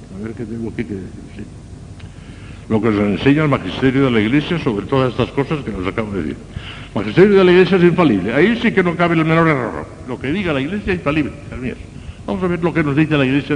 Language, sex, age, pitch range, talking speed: Spanish, male, 60-79, 110-170 Hz, 250 wpm